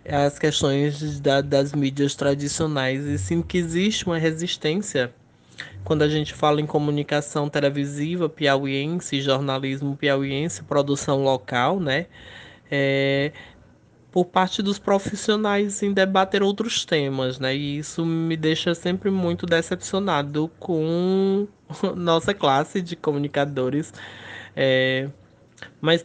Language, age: Portuguese, 20-39